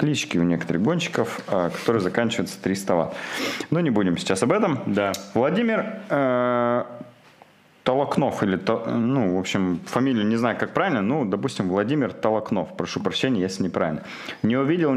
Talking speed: 150 wpm